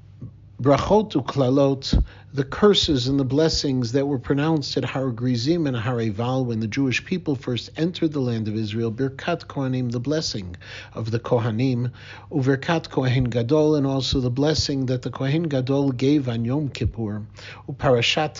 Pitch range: 115-155 Hz